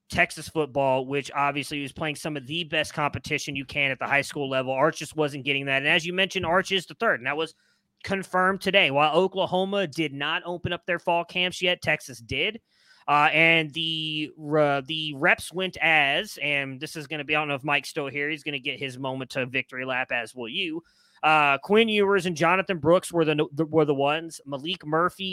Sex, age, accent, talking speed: male, 20-39, American, 220 wpm